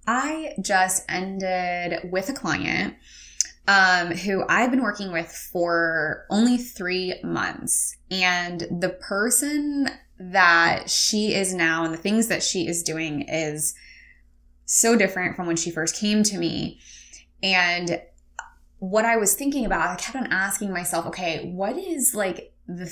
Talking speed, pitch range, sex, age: 145 wpm, 170-215 Hz, female, 10-29